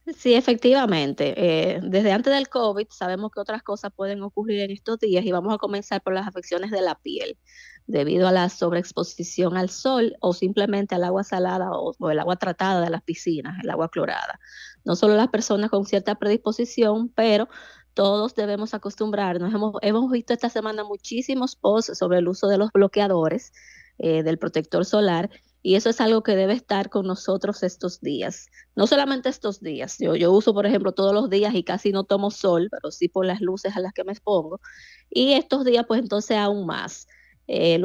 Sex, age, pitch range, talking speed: female, 20-39, 180-215 Hz, 195 wpm